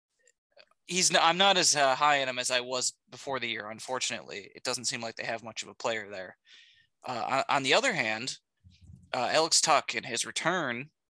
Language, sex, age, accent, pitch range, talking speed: English, male, 20-39, American, 120-155 Hz, 195 wpm